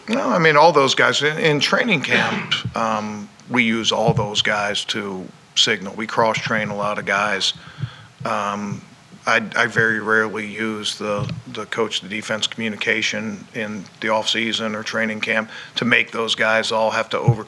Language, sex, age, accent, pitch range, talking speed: English, male, 50-69, American, 110-115 Hz, 180 wpm